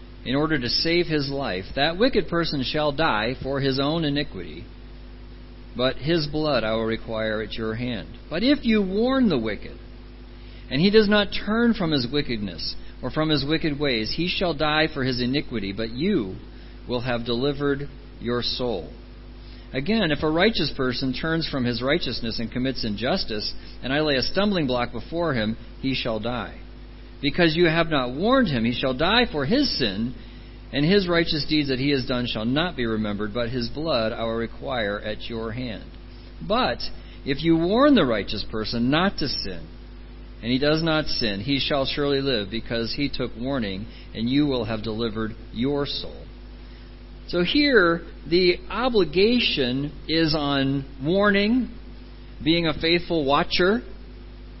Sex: male